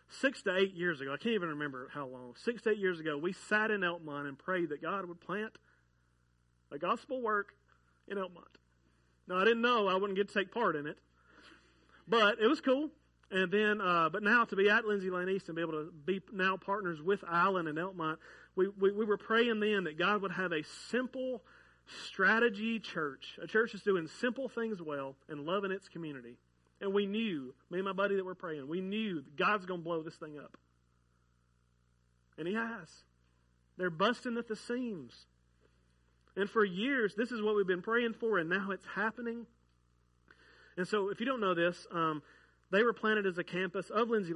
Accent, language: American, English